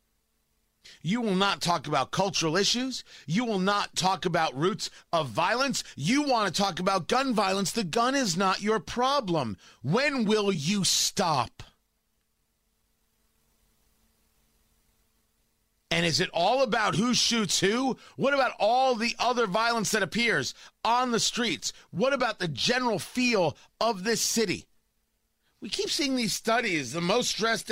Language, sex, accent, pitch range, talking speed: English, male, American, 170-235 Hz, 145 wpm